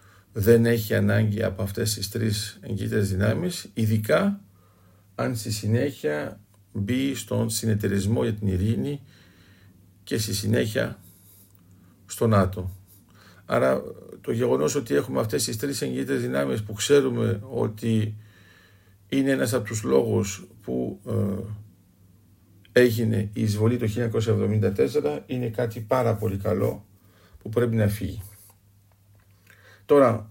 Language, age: Greek, 50-69